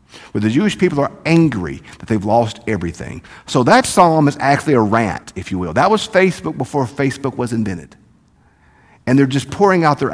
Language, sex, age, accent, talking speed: English, male, 50-69, American, 195 wpm